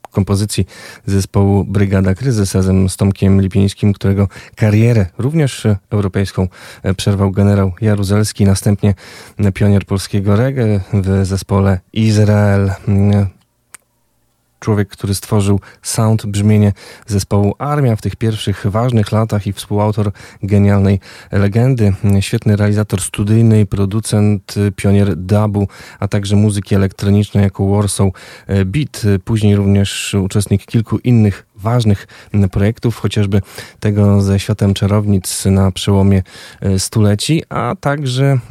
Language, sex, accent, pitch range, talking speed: Polish, male, native, 100-110 Hz, 105 wpm